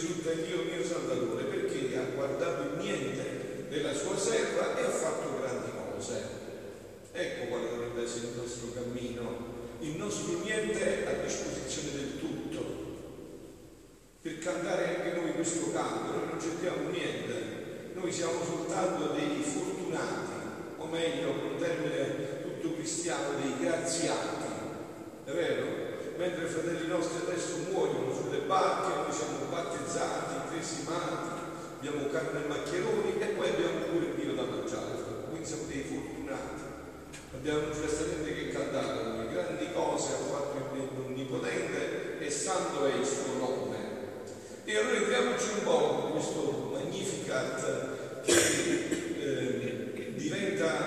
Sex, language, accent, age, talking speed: male, Italian, native, 40-59, 135 wpm